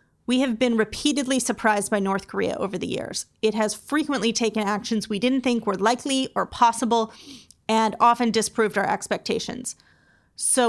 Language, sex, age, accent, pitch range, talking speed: English, female, 30-49, American, 215-255 Hz, 165 wpm